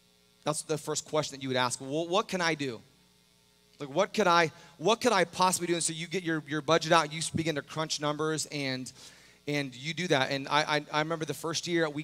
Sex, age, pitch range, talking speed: male, 30-49, 135-160 Hz, 245 wpm